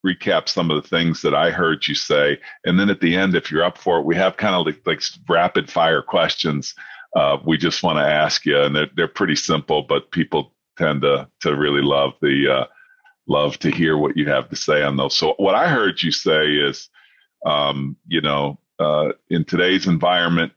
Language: English